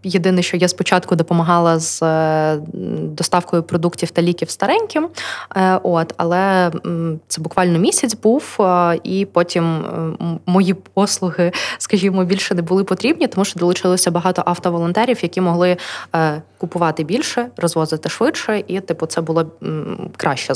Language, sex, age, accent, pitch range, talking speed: Ukrainian, female, 20-39, native, 170-200 Hz, 125 wpm